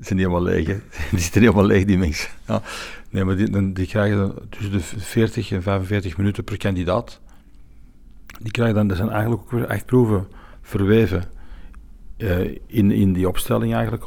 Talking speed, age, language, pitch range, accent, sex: 160 wpm, 60-79, English, 90-105 Hz, Dutch, male